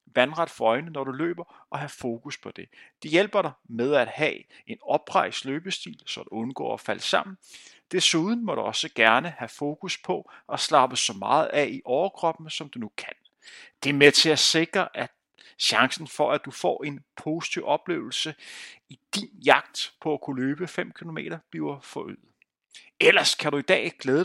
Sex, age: male, 30-49